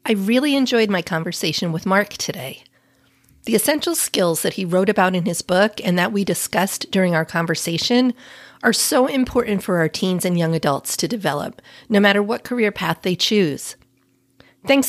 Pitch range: 165-230 Hz